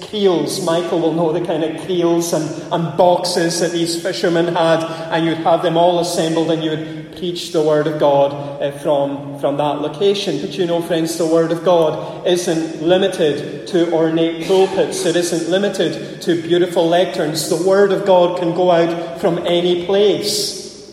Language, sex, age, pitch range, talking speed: English, male, 30-49, 170-200 Hz, 175 wpm